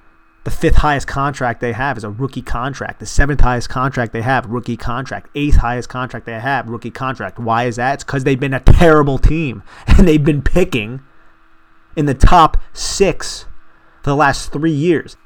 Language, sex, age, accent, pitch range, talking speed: English, male, 30-49, American, 105-135 Hz, 175 wpm